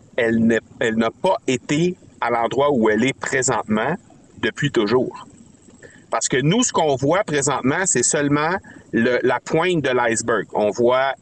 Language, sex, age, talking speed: French, male, 50-69, 155 wpm